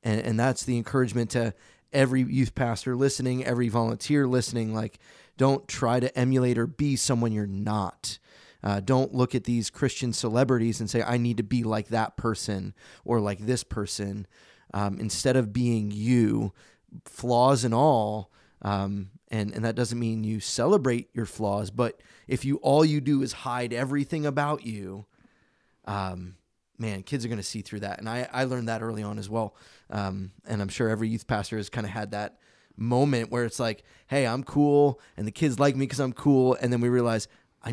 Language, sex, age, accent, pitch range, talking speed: English, male, 20-39, American, 110-125 Hz, 195 wpm